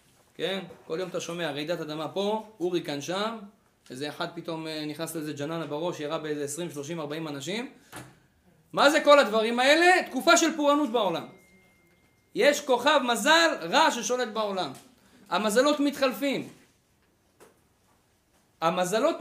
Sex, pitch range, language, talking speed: male, 155-220 Hz, Hebrew, 130 wpm